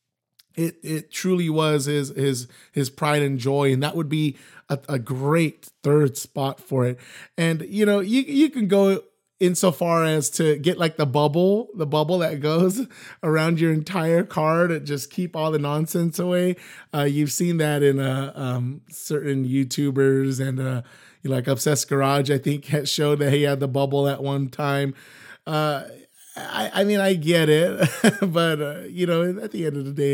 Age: 30-49